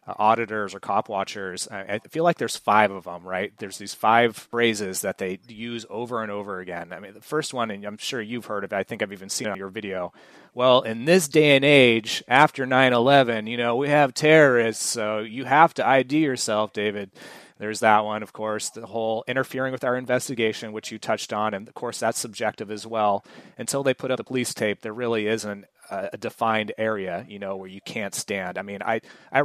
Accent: American